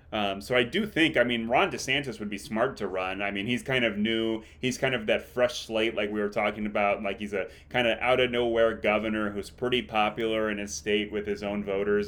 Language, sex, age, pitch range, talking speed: English, male, 30-49, 105-120 Hz, 250 wpm